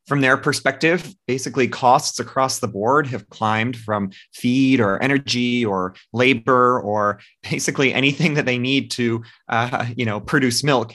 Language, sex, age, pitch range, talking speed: English, male, 30-49, 110-125 Hz, 155 wpm